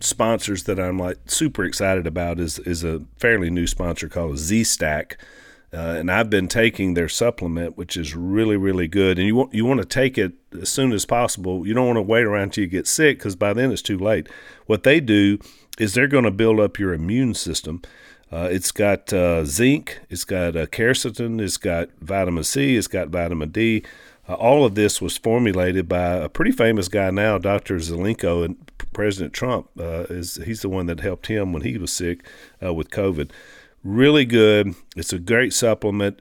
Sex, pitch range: male, 85-110 Hz